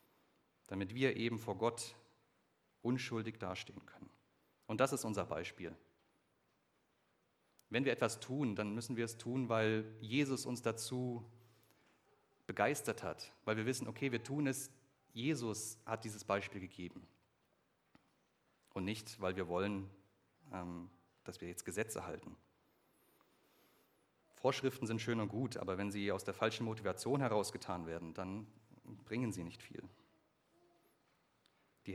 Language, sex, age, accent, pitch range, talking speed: German, male, 30-49, German, 100-125 Hz, 130 wpm